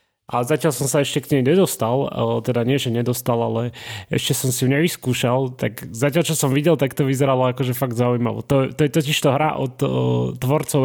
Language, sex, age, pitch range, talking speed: Slovak, male, 20-39, 120-150 Hz, 210 wpm